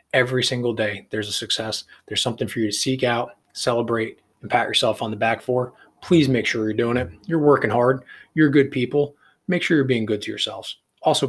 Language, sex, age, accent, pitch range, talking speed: English, male, 20-39, American, 115-140 Hz, 220 wpm